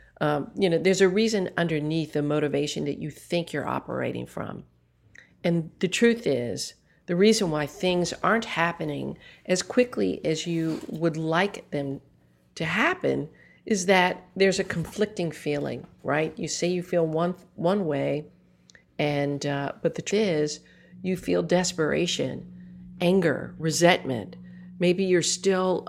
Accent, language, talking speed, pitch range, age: American, English, 145 wpm, 140-180 Hz, 50-69